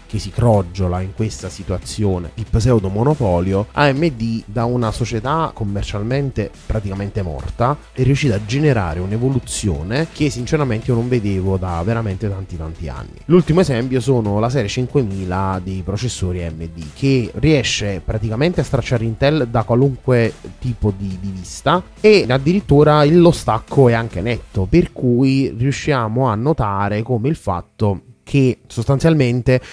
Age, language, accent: 30-49, Italian, native